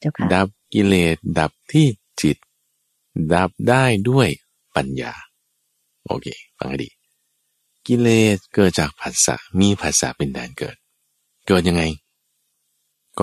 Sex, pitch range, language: male, 75-115 Hz, Thai